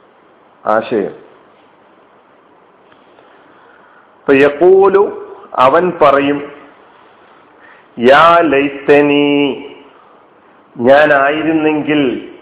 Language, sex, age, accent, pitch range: Malayalam, male, 40-59, native, 140-170 Hz